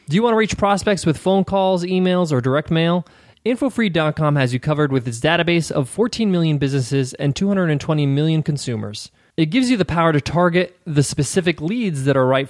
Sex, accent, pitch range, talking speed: male, American, 135-190 Hz, 195 wpm